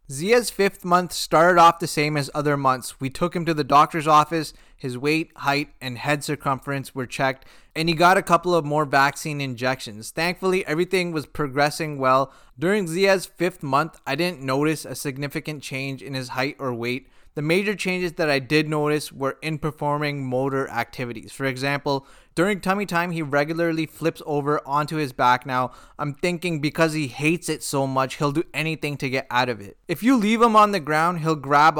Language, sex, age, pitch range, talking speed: English, male, 20-39, 140-170 Hz, 195 wpm